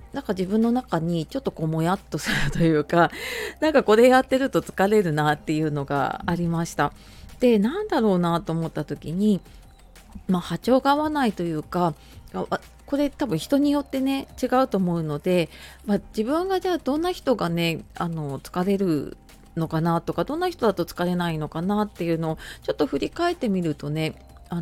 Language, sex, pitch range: Japanese, female, 160-245 Hz